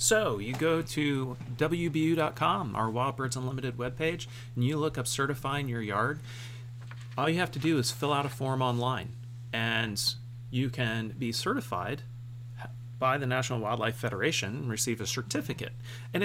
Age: 30-49